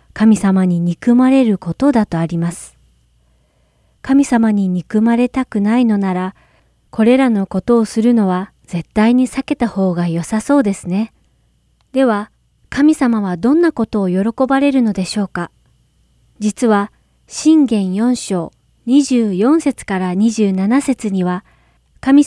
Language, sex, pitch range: Japanese, female, 180-240 Hz